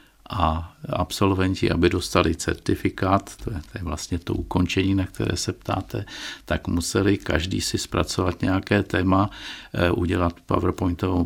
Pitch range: 85-95 Hz